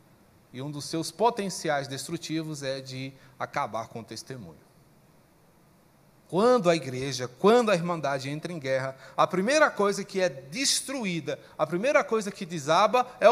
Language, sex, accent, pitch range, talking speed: Portuguese, male, Brazilian, 160-230 Hz, 150 wpm